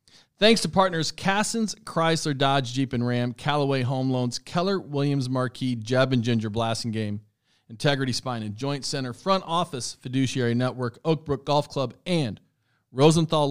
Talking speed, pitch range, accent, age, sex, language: 150 wpm, 120-145 Hz, American, 40-59, male, English